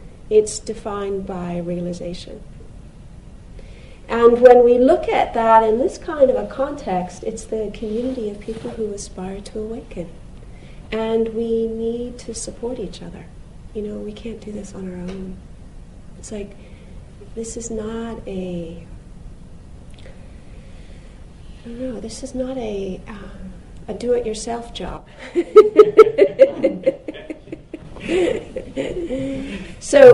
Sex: female